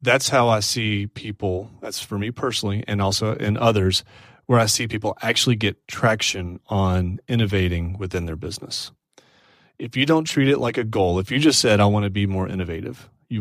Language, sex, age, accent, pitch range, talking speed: English, male, 30-49, American, 95-115 Hz, 195 wpm